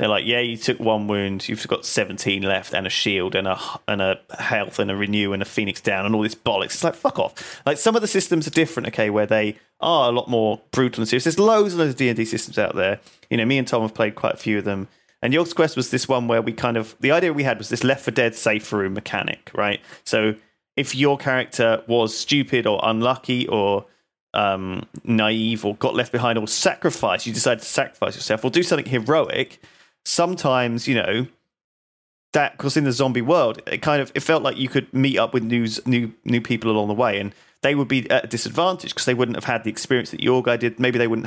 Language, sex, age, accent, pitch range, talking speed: English, male, 30-49, British, 110-130 Hz, 250 wpm